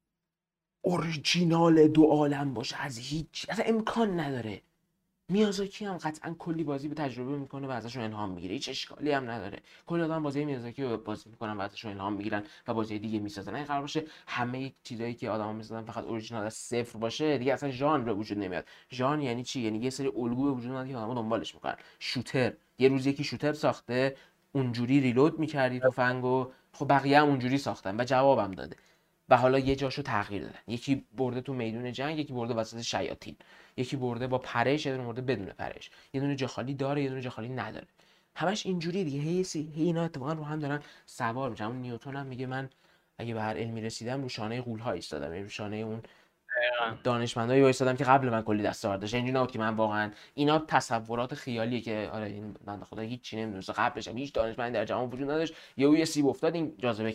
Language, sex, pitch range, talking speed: Persian, male, 115-150 Hz, 195 wpm